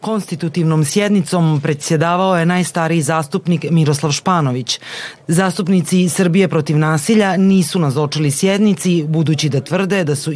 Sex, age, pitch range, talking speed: female, 30-49, 150-185 Hz, 115 wpm